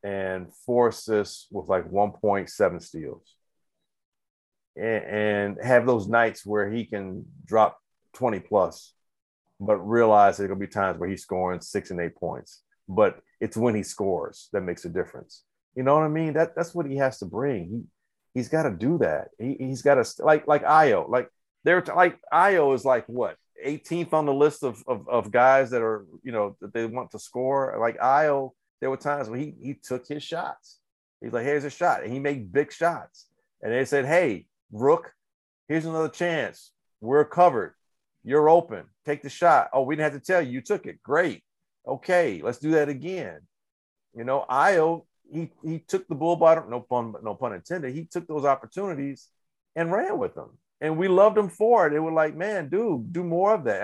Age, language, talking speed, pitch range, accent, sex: 40-59, English, 200 wpm, 110-160 Hz, American, male